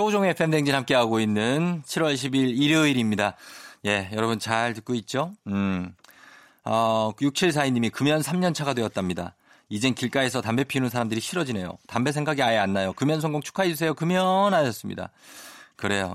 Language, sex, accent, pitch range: Korean, male, native, 100-145 Hz